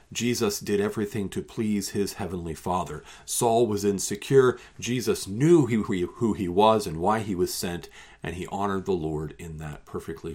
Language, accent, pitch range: English, American, 85-110 Hz